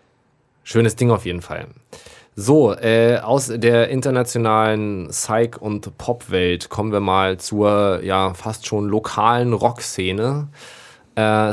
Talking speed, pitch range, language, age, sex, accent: 125 wpm, 100-120 Hz, German, 20-39, male, German